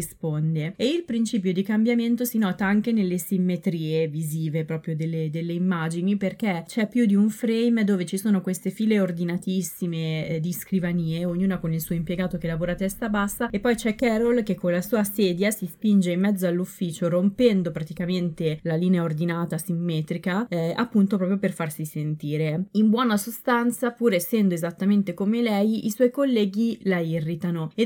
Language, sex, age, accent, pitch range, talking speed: Italian, female, 20-39, native, 175-215 Hz, 170 wpm